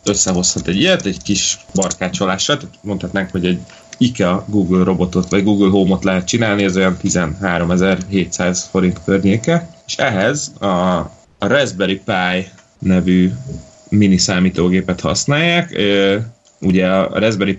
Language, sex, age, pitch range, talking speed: Hungarian, male, 30-49, 85-100 Hz, 115 wpm